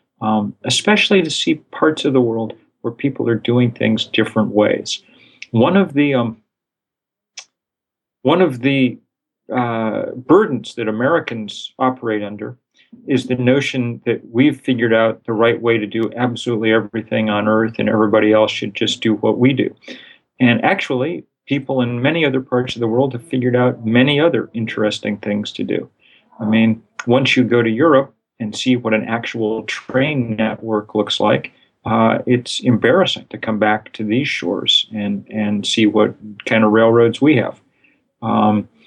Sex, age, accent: male, 40-59, American